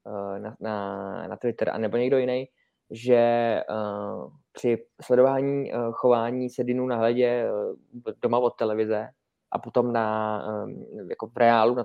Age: 20-39